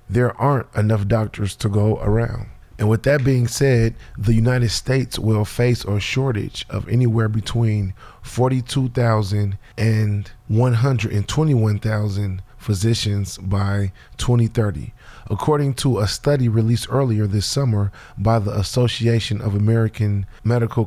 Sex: male